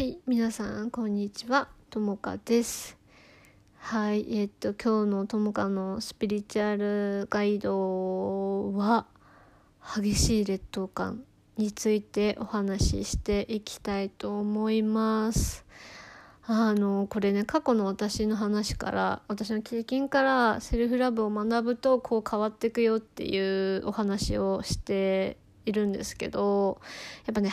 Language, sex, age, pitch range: Japanese, female, 20-39, 200-235 Hz